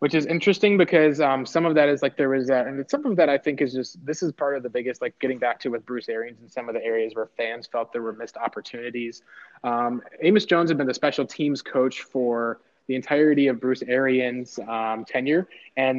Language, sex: English, male